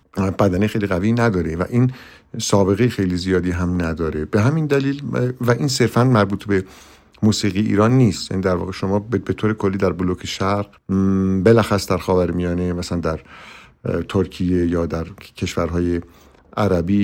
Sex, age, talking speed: male, 50-69, 150 wpm